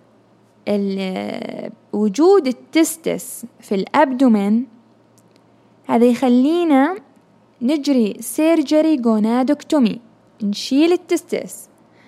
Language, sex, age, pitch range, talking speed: Arabic, female, 10-29, 230-310 Hz, 55 wpm